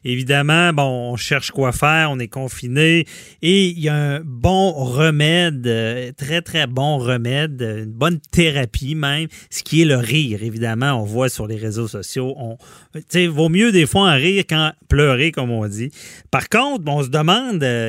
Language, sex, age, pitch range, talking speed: French, male, 30-49, 115-155 Hz, 180 wpm